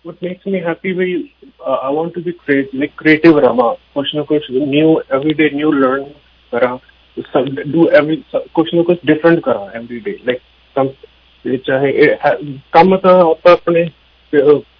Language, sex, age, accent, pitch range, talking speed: English, male, 30-49, Indian, 130-165 Hz, 95 wpm